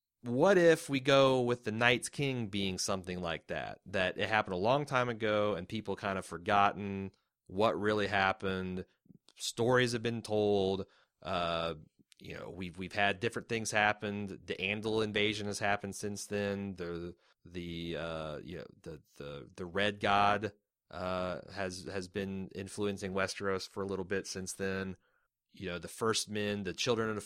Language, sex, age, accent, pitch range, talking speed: English, male, 30-49, American, 95-115 Hz, 170 wpm